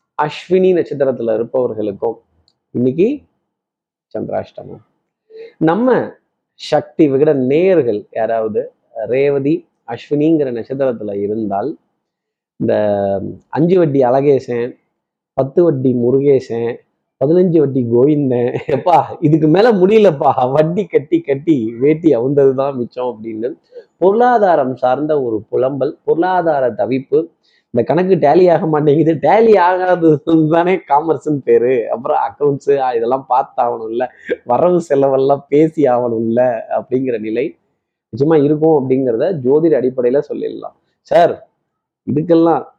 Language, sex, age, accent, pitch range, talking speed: Tamil, male, 30-49, native, 125-170 Hz, 90 wpm